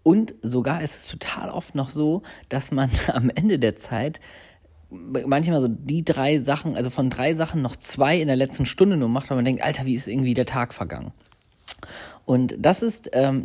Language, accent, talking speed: German, German, 200 wpm